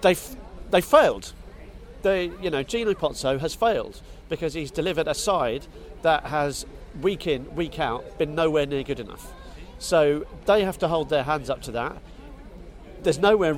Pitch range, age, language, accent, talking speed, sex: 130-160 Hz, 40-59, English, British, 170 wpm, male